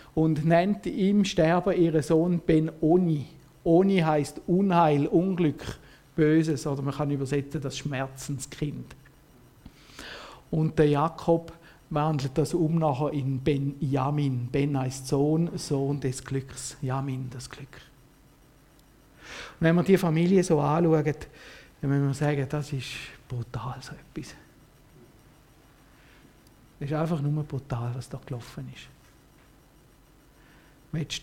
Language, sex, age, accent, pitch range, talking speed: German, male, 50-69, Austrian, 140-165 Hz, 115 wpm